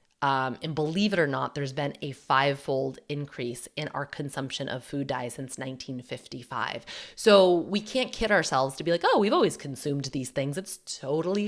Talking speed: 185 wpm